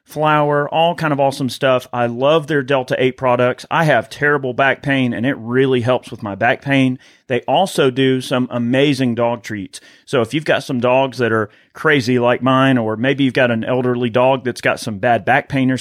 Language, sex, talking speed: English, male, 215 wpm